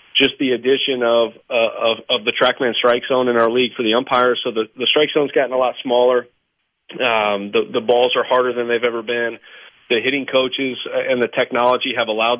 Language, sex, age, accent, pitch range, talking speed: English, male, 30-49, American, 115-130 Hz, 215 wpm